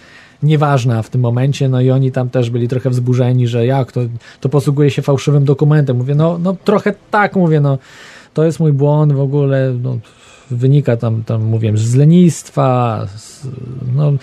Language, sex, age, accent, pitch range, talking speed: Polish, male, 20-39, native, 125-150 Hz, 175 wpm